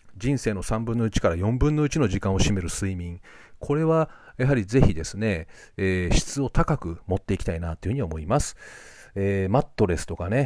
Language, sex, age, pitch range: Japanese, male, 40-59, 90-130 Hz